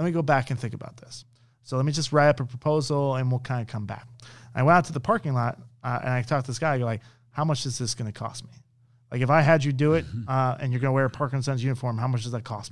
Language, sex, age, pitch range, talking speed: English, male, 30-49, 120-150 Hz, 320 wpm